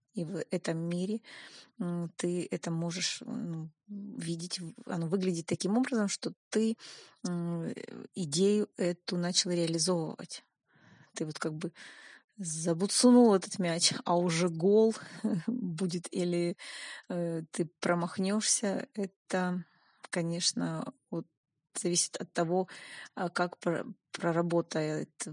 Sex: female